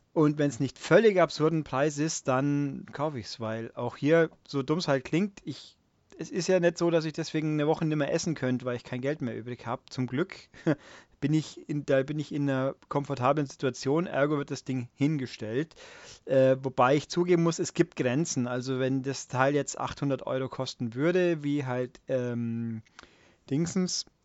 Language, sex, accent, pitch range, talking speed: German, male, German, 125-155 Hz, 200 wpm